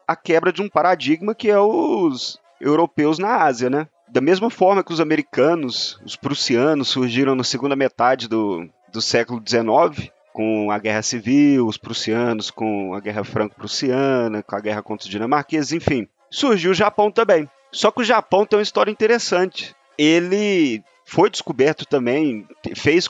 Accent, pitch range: Brazilian, 125-210 Hz